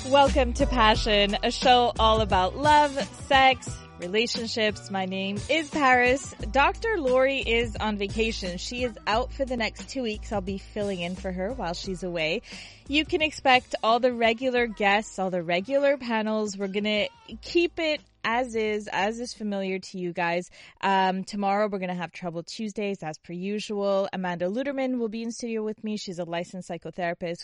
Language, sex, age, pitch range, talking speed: English, female, 20-39, 185-235 Hz, 180 wpm